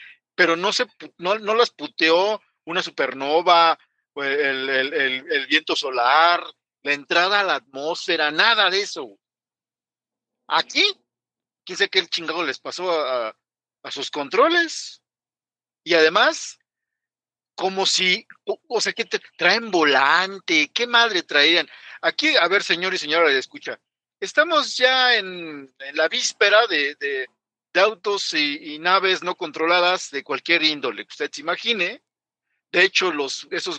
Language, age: Spanish, 50-69